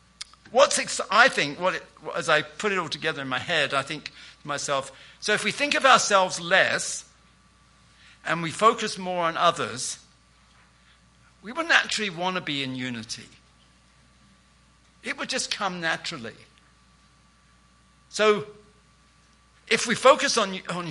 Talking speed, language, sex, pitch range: 130 wpm, English, male, 135-185 Hz